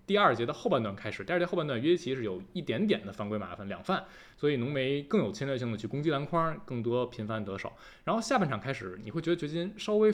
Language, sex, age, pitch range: Chinese, male, 20-39, 105-175 Hz